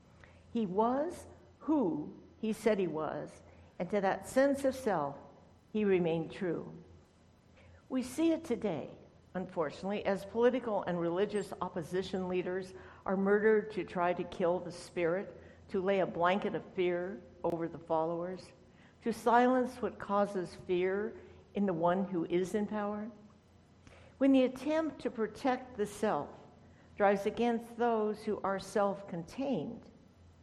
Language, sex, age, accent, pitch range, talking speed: English, female, 60-79, American, 165-215 Hz, 135 wpm